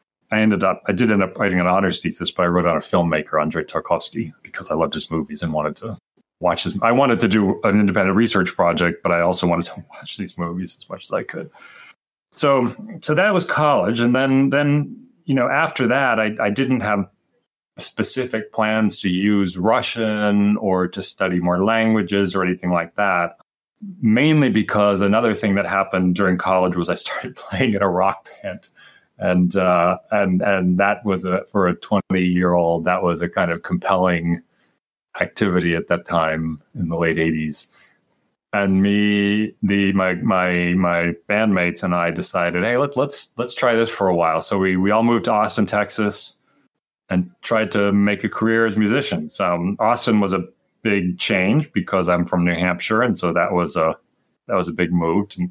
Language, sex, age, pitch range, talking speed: English, male, 30-49, 90-105 Hz, 195 wpm